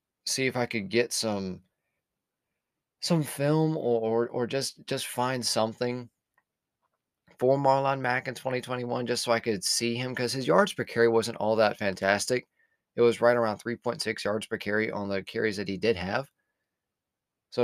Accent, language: American, English